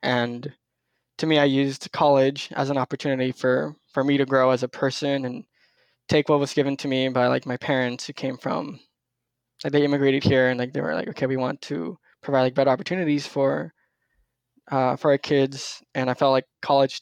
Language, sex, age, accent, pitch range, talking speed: English, male, 10-29, American, 130-140 Hz, 200 wpm